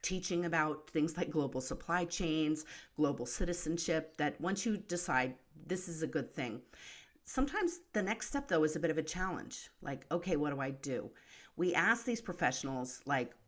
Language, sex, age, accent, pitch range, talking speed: English, female, 40-59, American, 140-175 Hz, 180 wpm